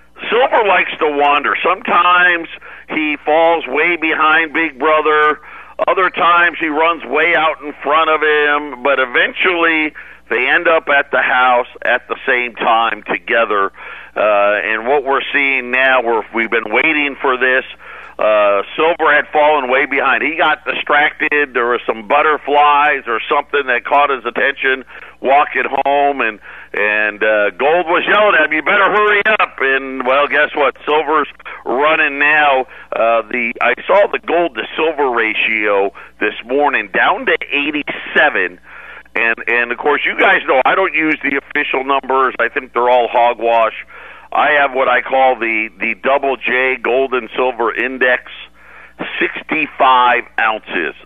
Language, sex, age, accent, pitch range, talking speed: English, male, 50-69, American, 120-155 Hz, 155 wpm